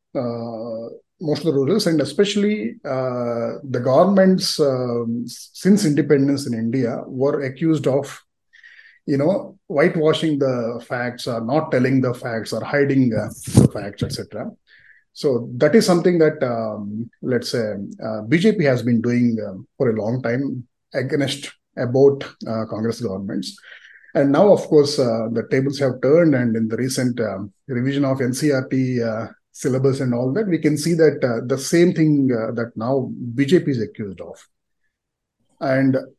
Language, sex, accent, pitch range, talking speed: Telugu, male, native, 120-155 Hz, 155 wpm